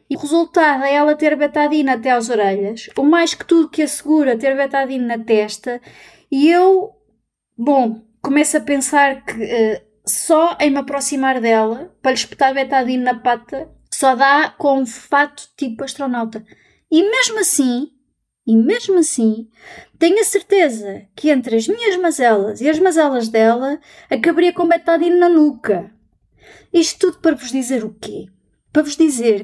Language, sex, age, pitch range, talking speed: Portuguese, female, 20-39, 225-300 Hz, 160 wpm